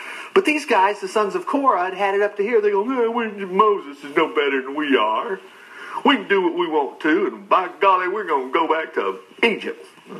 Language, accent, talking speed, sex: English, American, 255 wpm, male